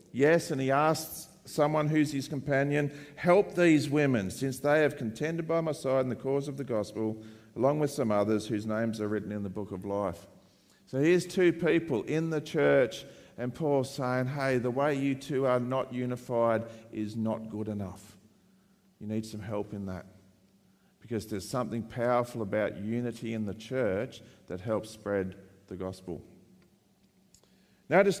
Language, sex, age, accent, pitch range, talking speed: English, male, 50-69, Australian, 110-150 Hz, 170 wpm